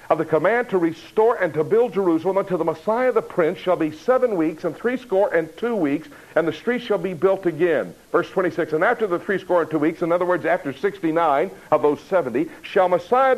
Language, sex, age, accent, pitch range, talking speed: English, male, 60-79, American, 145-210 Hz, 220 wpm